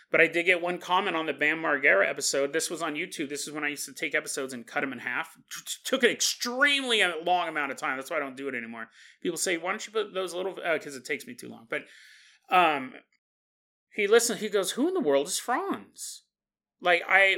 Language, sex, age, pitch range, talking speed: English, male, 30-49, 160-235 Hz, 250 wpm